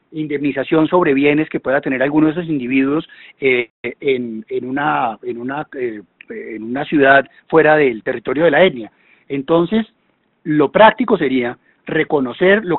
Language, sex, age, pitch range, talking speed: Spanish, male, 30-49, 135-180 Hz, 125 wpm